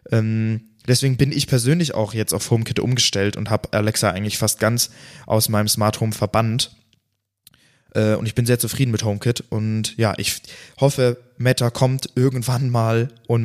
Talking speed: 160 wpm